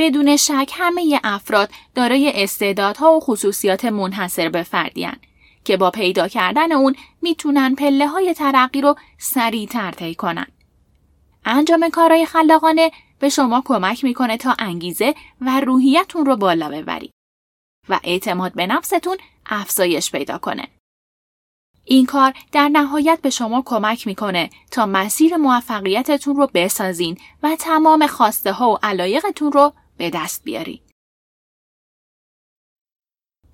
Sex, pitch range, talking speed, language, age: female, 200-300 Hz, 120 wpm, Persian, 10-29